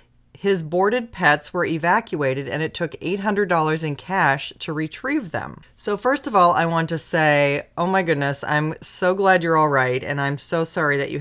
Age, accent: 30-49, American